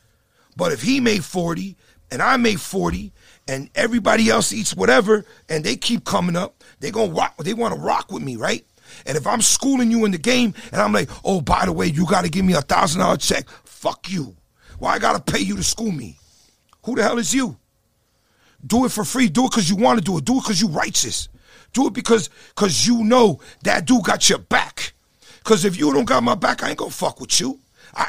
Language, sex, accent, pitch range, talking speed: English, male, American, 150-235 Hz, 235 wpm